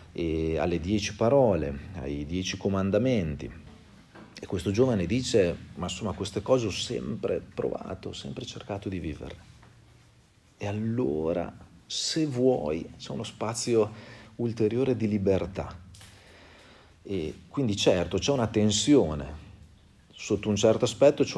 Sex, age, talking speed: male, 40-59, 120 wpm